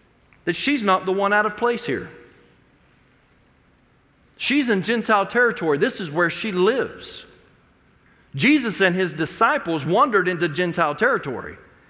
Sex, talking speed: male, 130 wpm